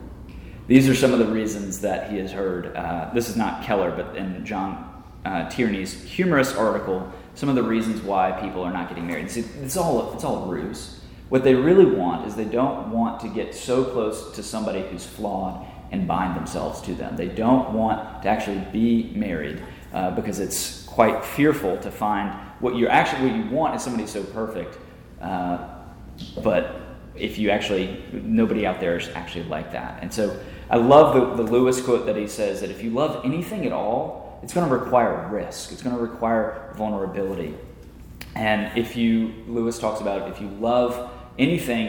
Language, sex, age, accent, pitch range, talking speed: English, male, 30-49, American, 95-120 Hz, 195 wpm